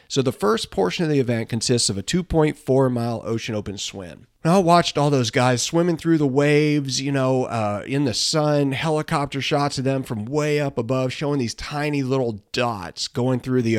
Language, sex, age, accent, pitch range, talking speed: English, male, 40-59, American, 115-150 Hz, 200 wpm